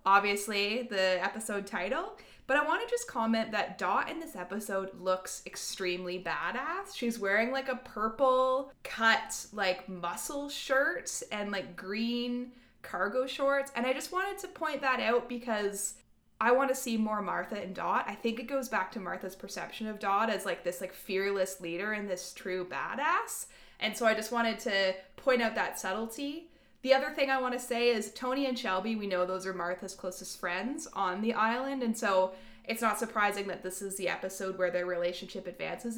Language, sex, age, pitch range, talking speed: English, female, 20-39, 190-265 Hz, 190 wpm